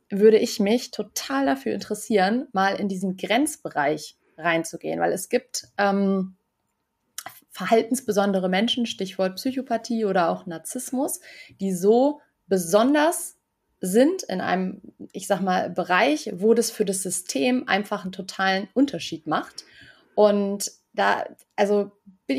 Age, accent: 30-49, German